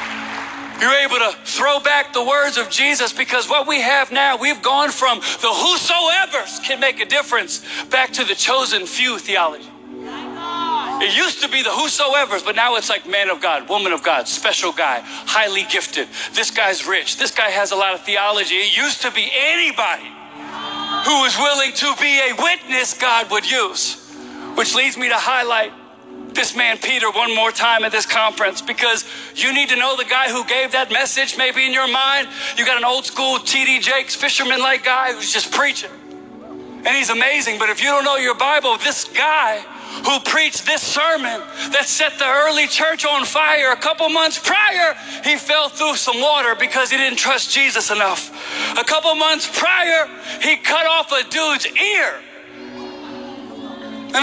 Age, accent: 40-59, American